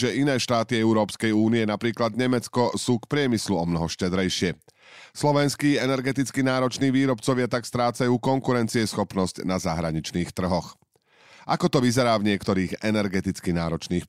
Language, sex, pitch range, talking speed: Slovak, male, 100-130 Hz, 130 wpm